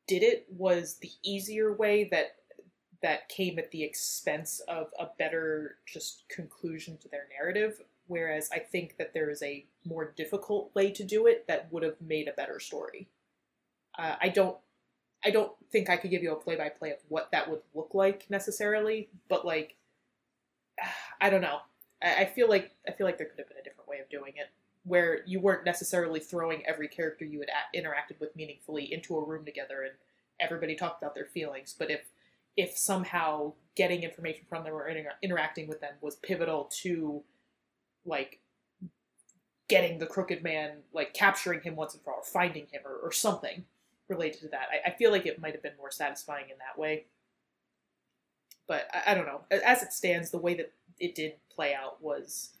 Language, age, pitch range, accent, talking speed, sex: English, 20-39, 155-195 Hz, American, 190 wpm, female